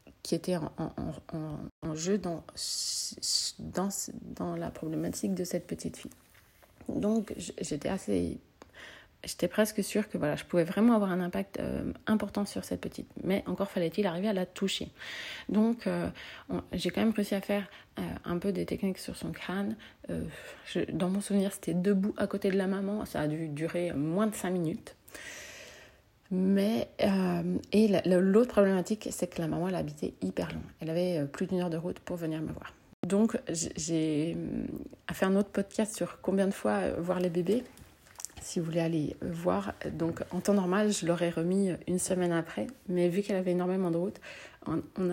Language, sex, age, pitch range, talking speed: French, female, 30-49, 175-205 Hz, 185 wpm